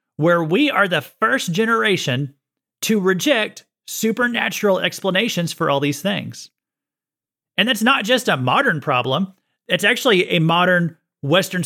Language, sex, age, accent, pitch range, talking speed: English, male, 30-49, American, 155-210 Hz, 135 wpm